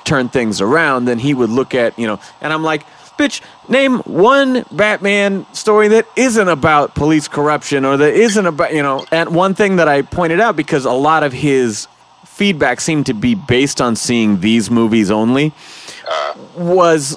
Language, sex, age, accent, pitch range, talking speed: English, male, 30-49, American, 140-200 Hz, 185 wpm